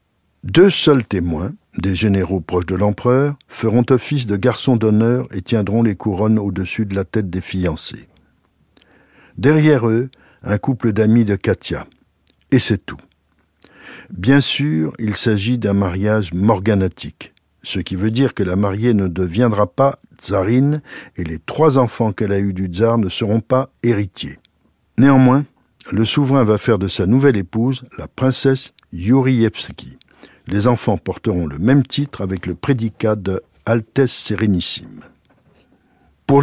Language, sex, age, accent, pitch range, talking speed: French, male, 60-79, French, 95-130 Hz, 145 wpm